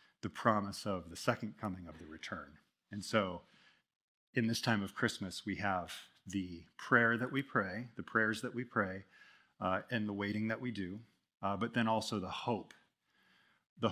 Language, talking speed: English, 180 wpm